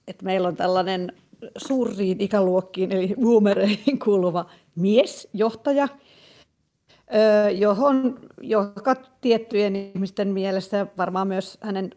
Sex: female